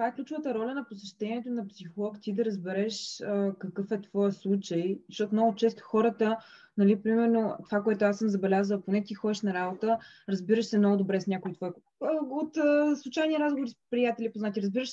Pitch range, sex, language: 200-255 Hz, female, Bulgarian